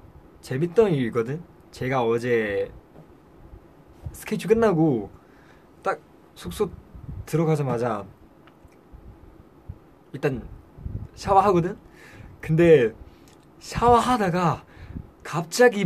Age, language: 20-39, Korean